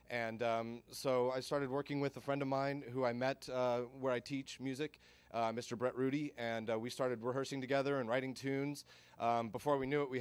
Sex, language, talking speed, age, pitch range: male, English, 225 wpm, 30-49, 115-140 Hz